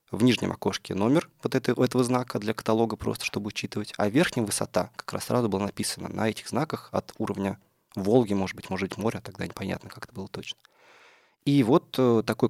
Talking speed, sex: 195 wpm, male